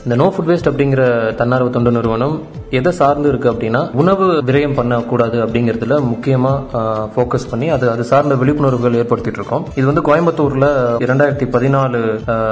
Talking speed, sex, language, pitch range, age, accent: 135 wpm, male, Tamil, 115-140 Hz, 20-39, native